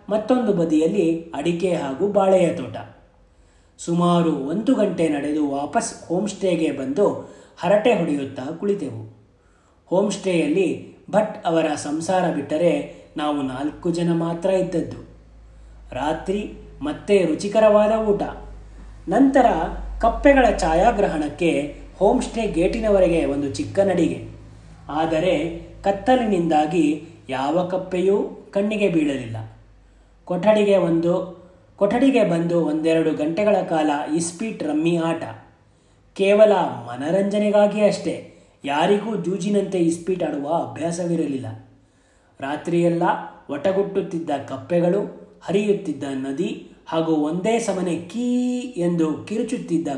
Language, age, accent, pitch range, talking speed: Kannada, 30-49, native, 145-195 Hz, 85 wpm